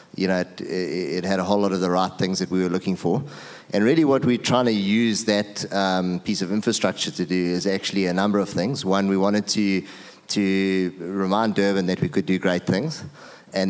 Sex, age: male, 30-49